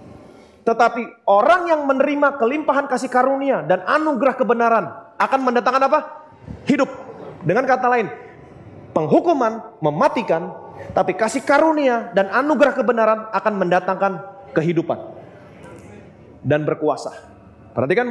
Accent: native